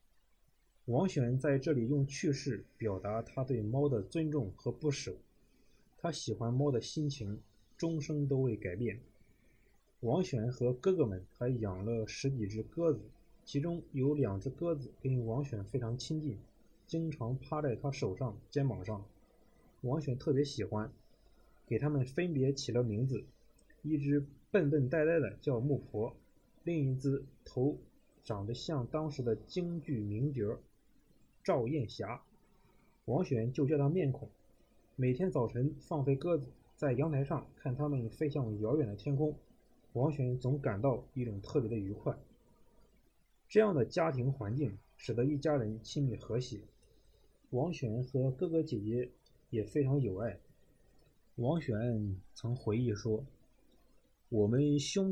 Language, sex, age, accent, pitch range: Chinese, male, 20-39, native, 115-150 Hz